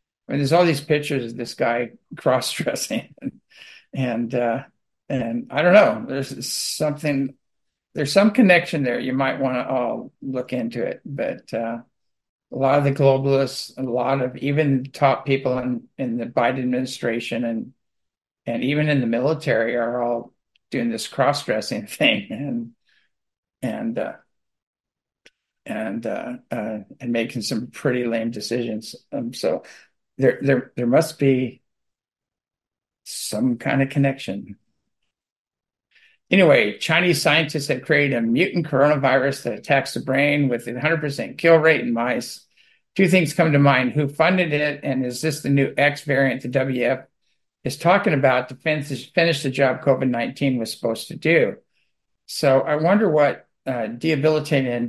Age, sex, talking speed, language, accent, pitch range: 50-69, male, 155 wpm, English, American, 120-145 Hz